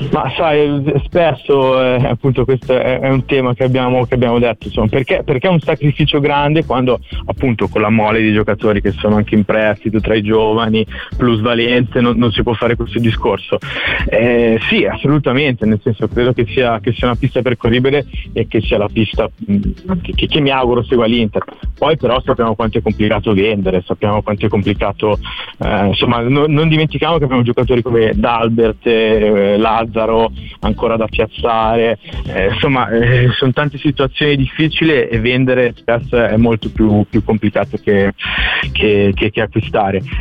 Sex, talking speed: male, 175 wpm